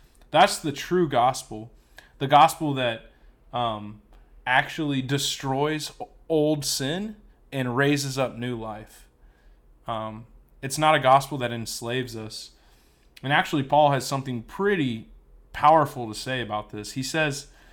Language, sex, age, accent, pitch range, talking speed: English, male, 20-39, American, 115-150 Hz, 130 wpm